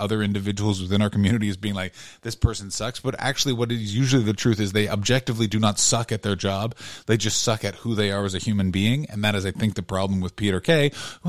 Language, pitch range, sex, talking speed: English, 100-130 Hz, male, 260 wpm